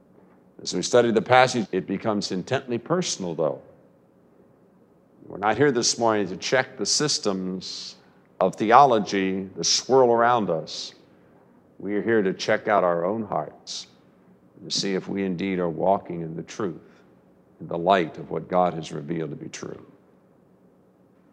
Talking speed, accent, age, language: 155 wpm, American, 50-69, English